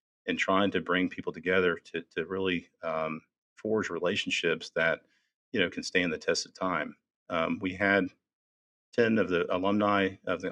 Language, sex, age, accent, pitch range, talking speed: English, male, 40-59, American, 90-100 Hz, 170 wpm